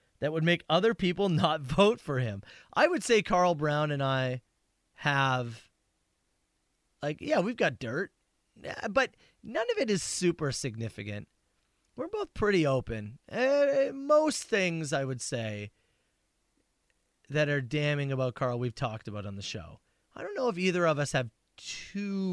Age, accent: 30-49, American